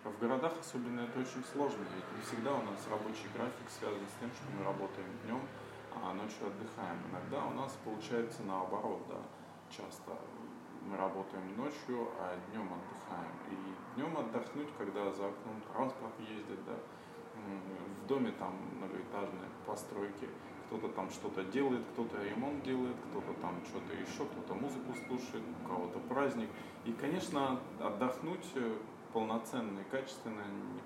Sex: male